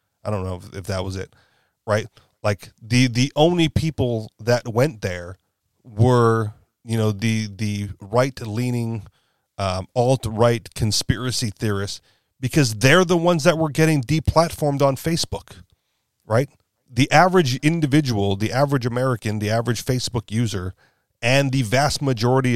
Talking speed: 140 wpm